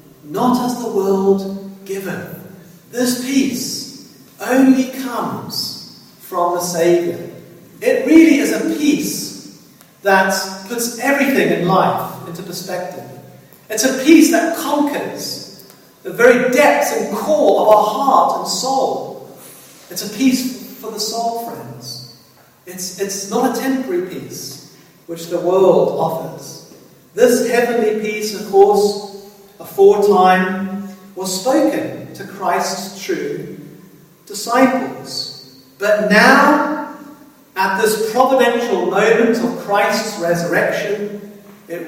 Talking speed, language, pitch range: 110 wpm, English, 175-240 Hz